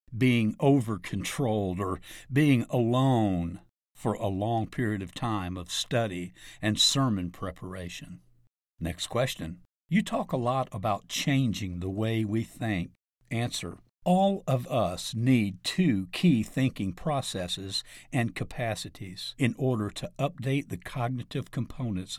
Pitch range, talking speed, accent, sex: 95-130 Hz, 125 wpm, American, male